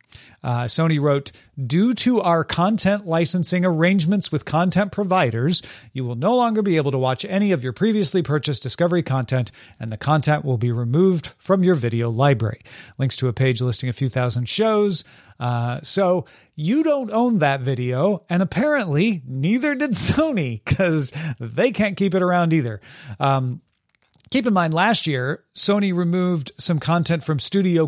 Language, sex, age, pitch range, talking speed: English, male, 40-59, 135-185 Hz, 165 wpm